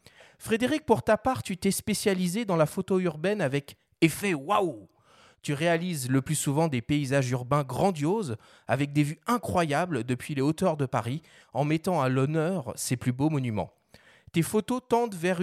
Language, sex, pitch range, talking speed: French, male, 140-195 Hz, 170 wpm